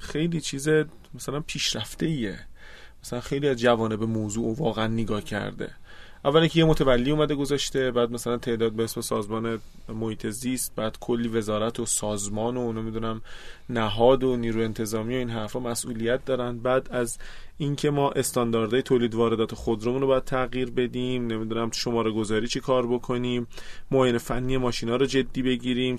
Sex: male